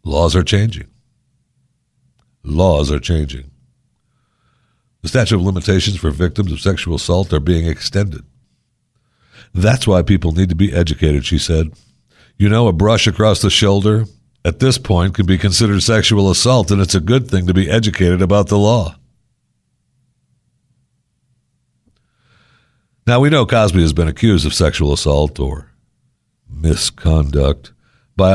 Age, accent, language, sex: 60-79, American, English, male